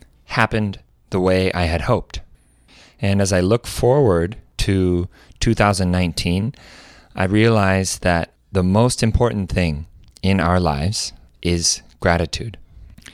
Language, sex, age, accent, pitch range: Korean, male, 30-49, American, 85-105 Hz